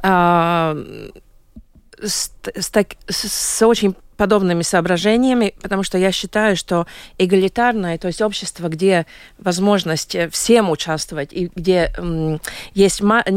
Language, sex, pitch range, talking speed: Russian, female, 165-210 Hz, 95 wpm